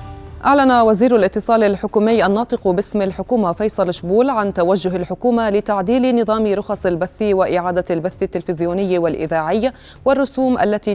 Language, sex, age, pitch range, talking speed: Arabic, female, 30-49, 180-230 Hz, 120 wpm